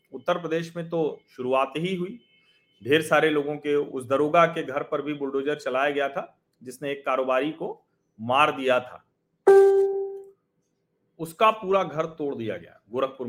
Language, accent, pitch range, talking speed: Hindi, native, 140-215 Hz, 160 wpm